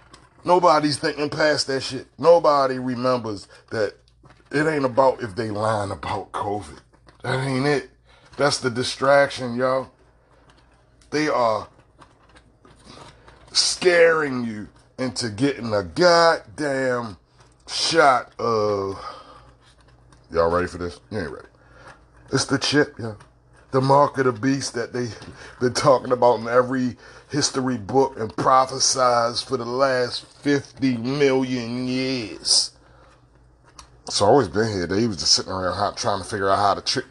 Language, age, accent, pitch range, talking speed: English, 30-49, American, 115-140 Hz, 135 wpm